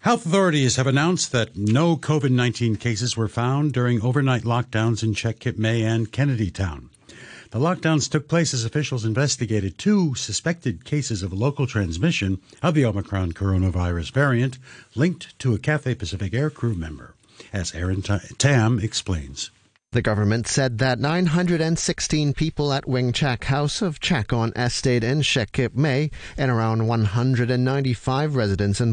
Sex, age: male, 60-79